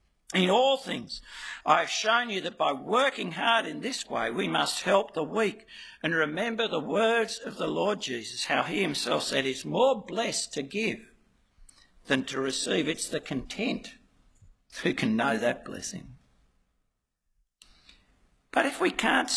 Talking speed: 160 wpm